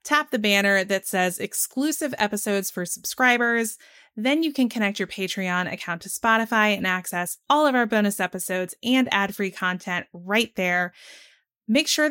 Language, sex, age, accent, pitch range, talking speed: English, female, 20-39, American, 190-235 Hz, 165 wpm